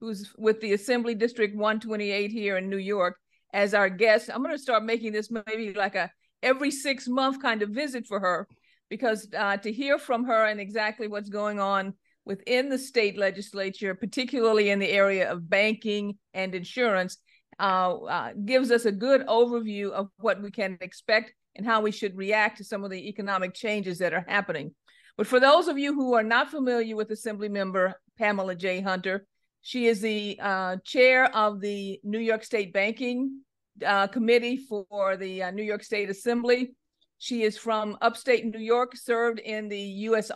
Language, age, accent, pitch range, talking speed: English, 50-69, American, 200-235 Hz, 180 wpm